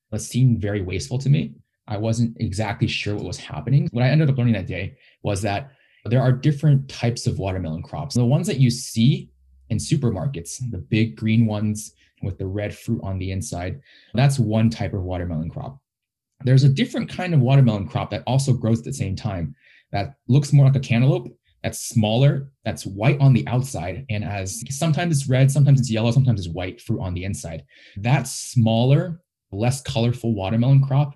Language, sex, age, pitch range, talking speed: English, male, 20-39, 105-135 Hz, 195 wpm